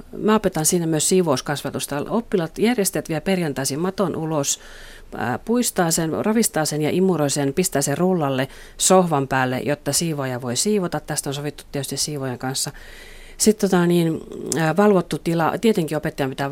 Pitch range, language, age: 140-185 Hz, Finnish, 40-59